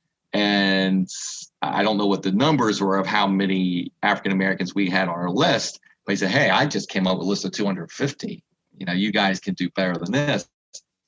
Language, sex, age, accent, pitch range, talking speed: English, male, 40-59, American, 95-120 Hz, 210 wpm